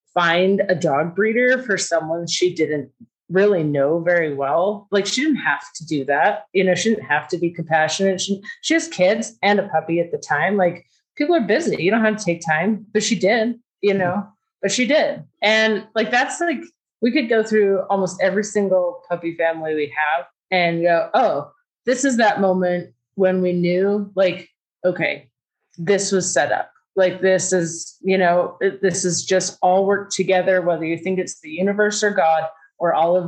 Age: 30-49